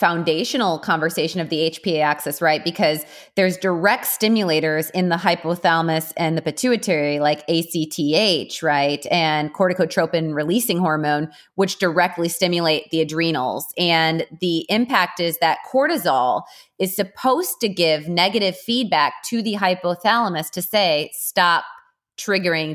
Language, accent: English, American